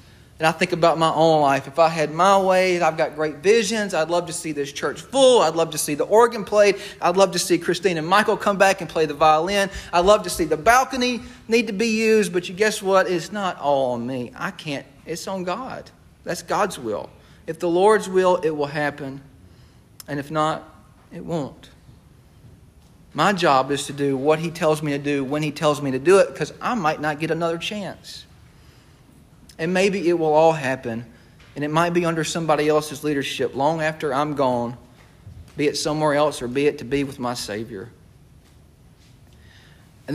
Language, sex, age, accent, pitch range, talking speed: English, male, 40-59, American, 140-180 Hz, 205 wpm